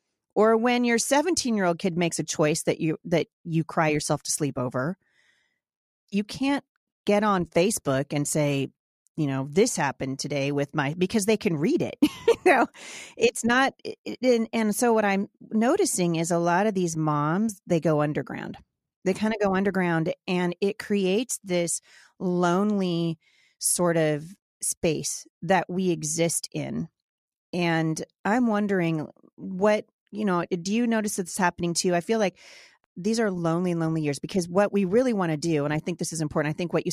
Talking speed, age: 175 wpm, 40-59